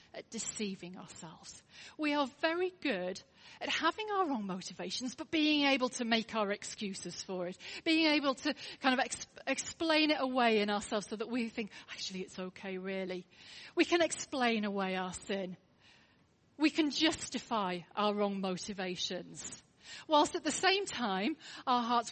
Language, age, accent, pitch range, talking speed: English, 40-59, British, 205-295 Hz, 155 wpm